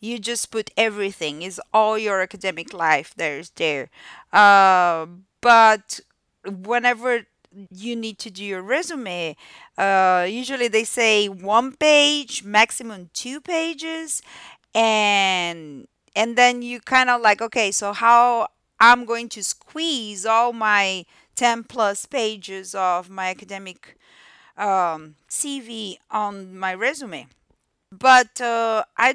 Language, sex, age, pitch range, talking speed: English, female, 40-59, 195-245 Hz, 125 wpm